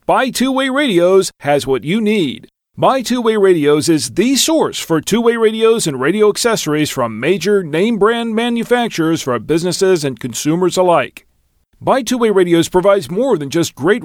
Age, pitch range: 40-59, 160-225 Hz